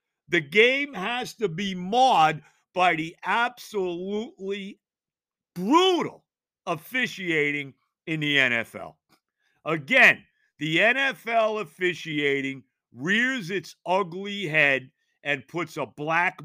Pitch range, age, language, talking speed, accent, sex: 145-225 Hz, 50-69, English, 95 wpm, American, male